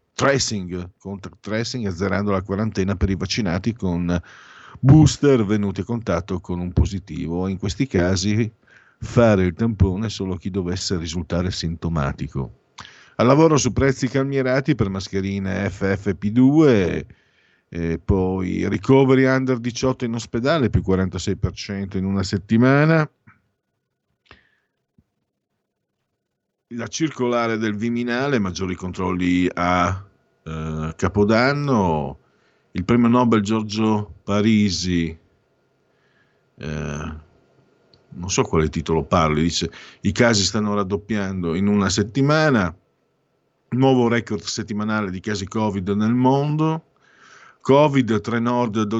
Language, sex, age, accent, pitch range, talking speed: Italian, male, 50-69, native, 95-120 Hz, 105 wpm